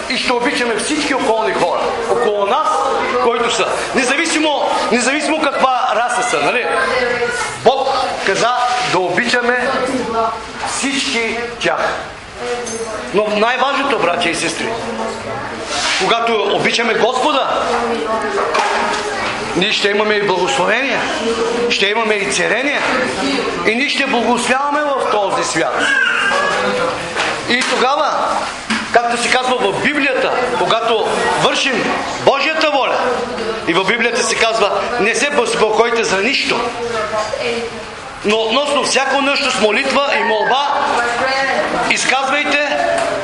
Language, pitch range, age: English, 225-270 Hz, 40-59